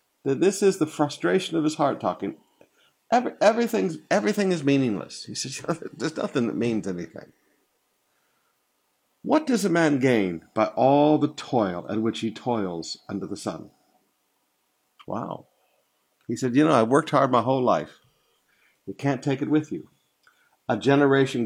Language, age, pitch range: English, 50-69, 110-150 Hz